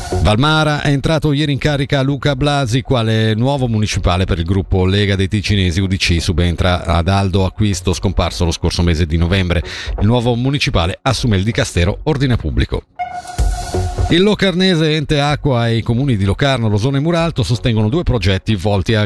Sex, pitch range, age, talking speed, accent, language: male, 100-140 Hz, 50-69, 165 wpm, native, Italian